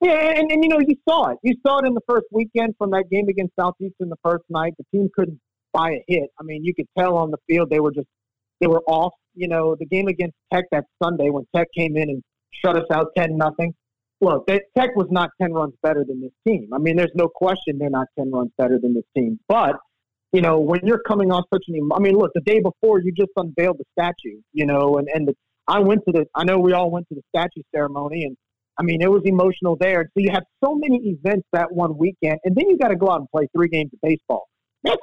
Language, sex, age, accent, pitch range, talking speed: English, male, 40-59, American, 155-200 Hz, 265 wpm